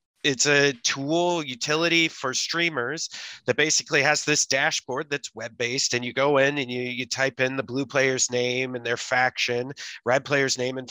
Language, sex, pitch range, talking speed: English, male, 125-140 Hz, 180 wpm